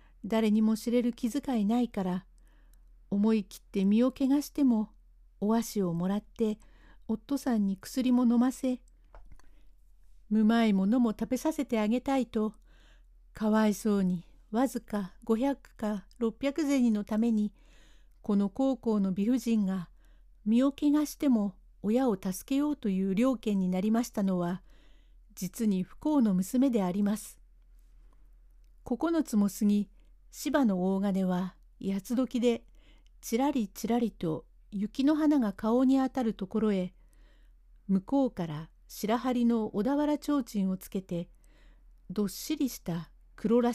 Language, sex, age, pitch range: Japanese, female, 60-79, 200-255 Hz